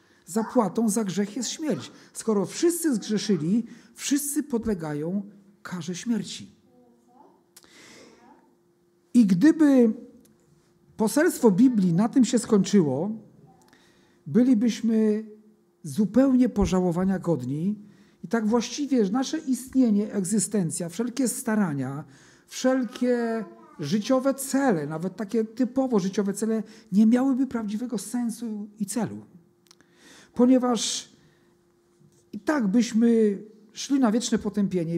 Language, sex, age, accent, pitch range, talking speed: Polish, male, 50-69, native, 180-240 Hz, 95 wpm